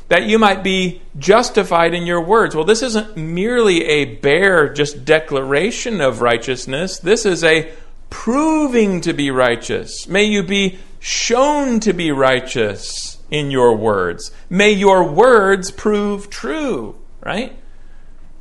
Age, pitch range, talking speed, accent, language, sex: 40-59, 140-200 Hz, 135 wpm, American, English, male